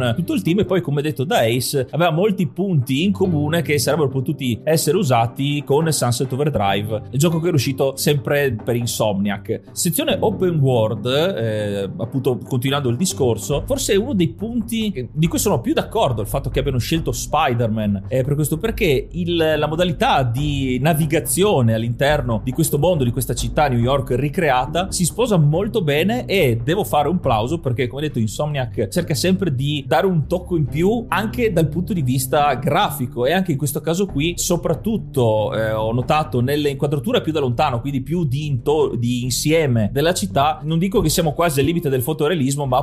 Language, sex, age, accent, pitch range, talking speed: Italian, male, 30-49, native, 125-165 Hz, 185 wpm